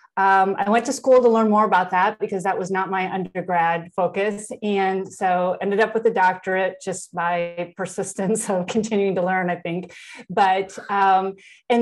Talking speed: 185 wpm